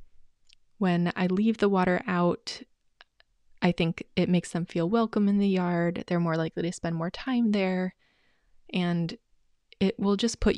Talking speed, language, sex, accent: 165 wpm, English, female, American